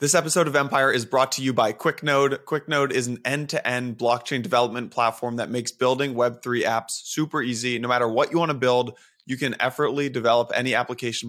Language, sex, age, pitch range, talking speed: English, male, 20-39, 120-140 Hz, 195 wpm